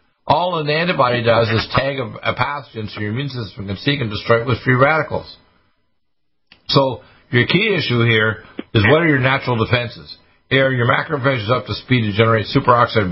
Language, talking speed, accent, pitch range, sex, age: English, 185 wpm, American, 110-135 Hz, male, 60-79